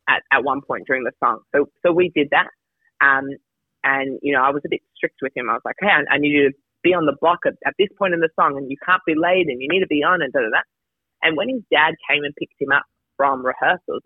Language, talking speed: English, 295 wpm